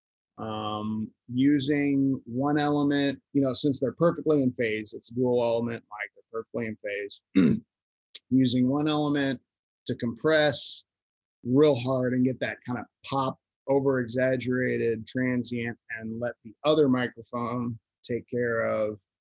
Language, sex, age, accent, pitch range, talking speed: English, male, 30-49, American, 115-145 Hz, 135 wpm